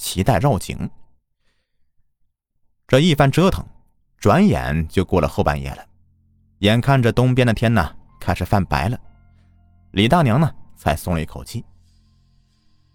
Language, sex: Chinese, male